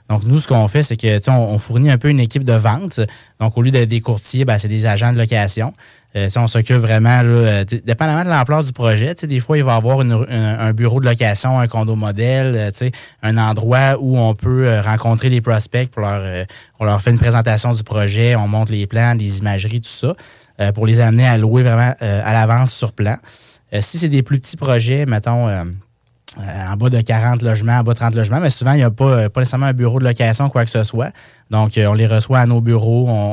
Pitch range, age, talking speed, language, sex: 105-120 Hz, 20-39, 255 wpm, French, male